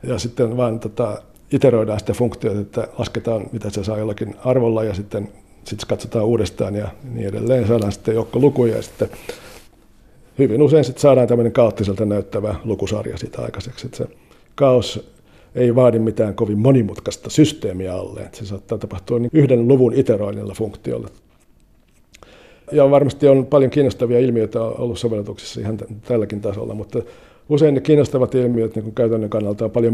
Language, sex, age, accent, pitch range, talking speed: Finnish, male, 60-79, native, 105-125 Hz, 155 wpm